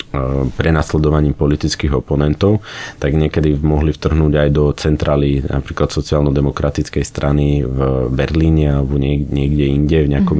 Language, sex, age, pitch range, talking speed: Slovak, male, 30-49, 70-75 Hz, 115 wpm